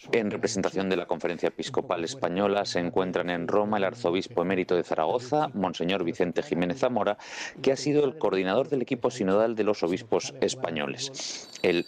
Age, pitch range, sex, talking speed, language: 40-59, 90-125 Hz, male, 165 wpm, Spanish